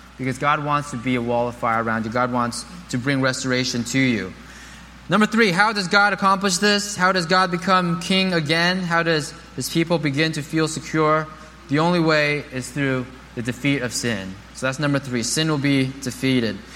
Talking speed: 200 wpm